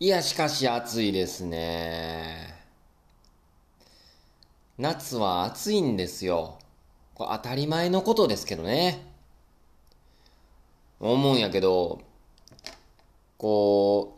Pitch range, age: 85-140 Hz, 20-39